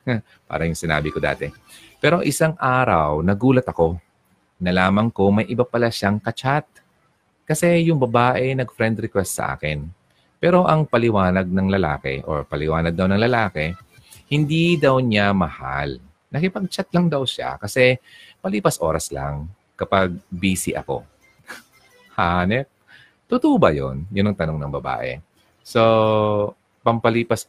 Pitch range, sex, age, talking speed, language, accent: 85-120 Hz, male, 30-49, 130 wpm, Filipino, native